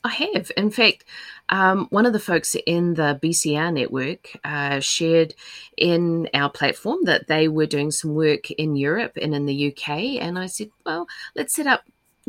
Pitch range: 160-240 Hz